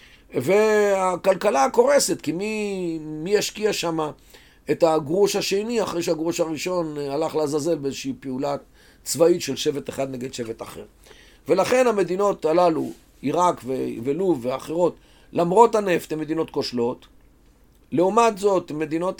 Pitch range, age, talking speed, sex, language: 150-205 Hz, 40-59, 120 wpm, male, Hebrew